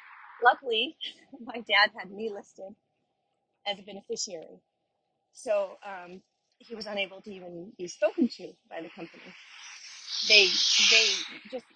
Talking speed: 130 wpm